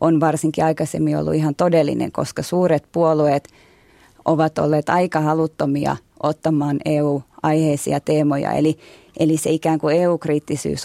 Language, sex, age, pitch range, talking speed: Finnish, female, 20-39, 145-160 Hz, 120 wpm